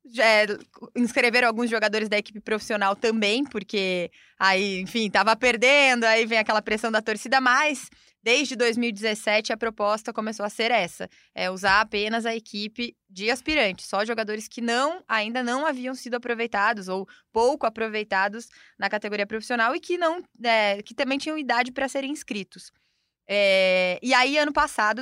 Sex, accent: female, Brazilian